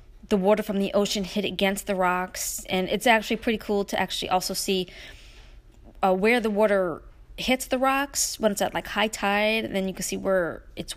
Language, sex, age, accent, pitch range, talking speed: English, female, 20-39, American, 195-245 Hz, 210 wpm